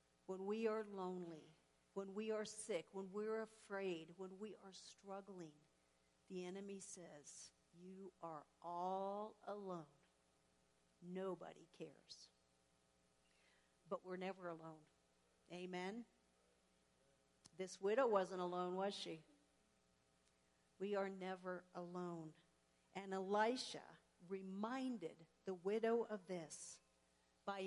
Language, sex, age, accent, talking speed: English, female, 50-69, American, 100 wpm